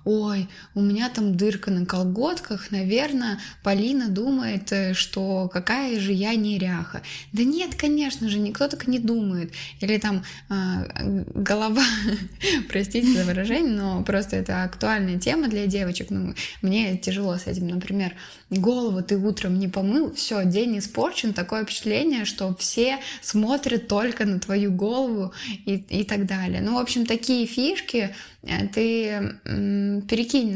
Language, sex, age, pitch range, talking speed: Russian, female, 20-39, 195-230 Hz, 140 wpm